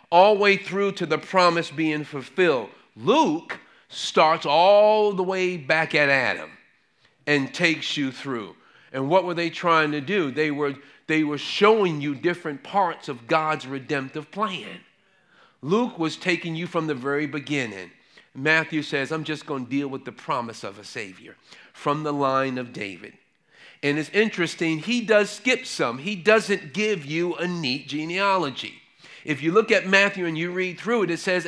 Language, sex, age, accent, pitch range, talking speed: English, male, 40-59, American, 140-185 Hz, 175 wpm